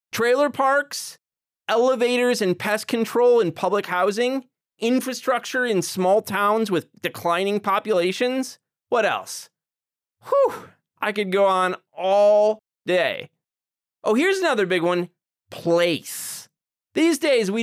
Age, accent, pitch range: 30-49, American, 180-245 Hz